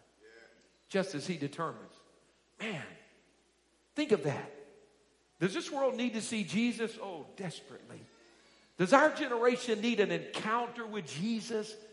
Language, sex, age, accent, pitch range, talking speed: English, male, 50-69, American, 185-250 Hz, 125 wpm